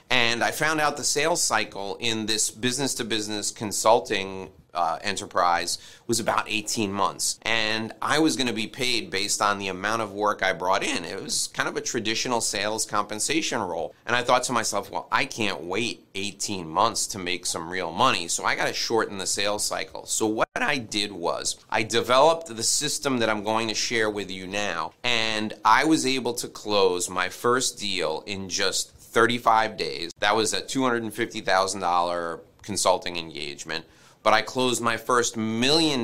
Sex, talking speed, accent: male, 180 wpm, American